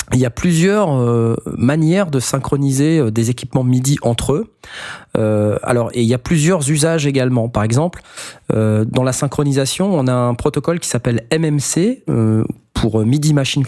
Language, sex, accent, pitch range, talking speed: French, male, French, 115-160 Hz, 175 wpm